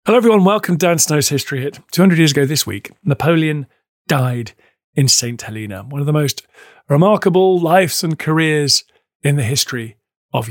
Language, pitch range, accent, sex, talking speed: English, 125-175 Hz, British, male, 170 wpm